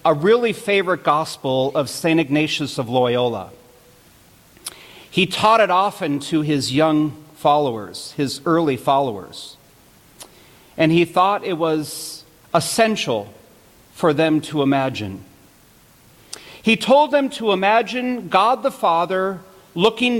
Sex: male